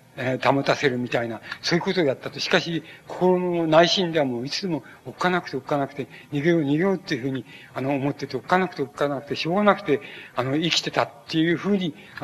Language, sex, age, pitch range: Japanese, male, 60-79, 135-170 Hz